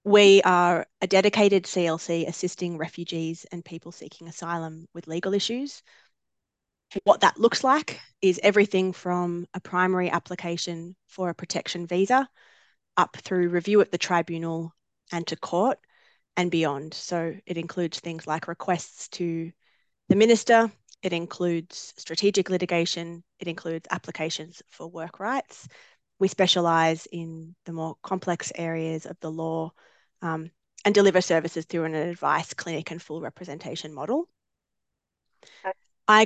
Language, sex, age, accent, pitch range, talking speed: English, female, 20-39, Australian, 165-190 Hz, 135 wpm